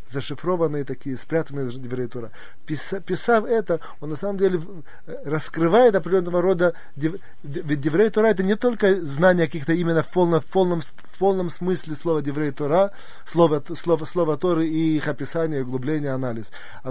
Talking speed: 150 wpm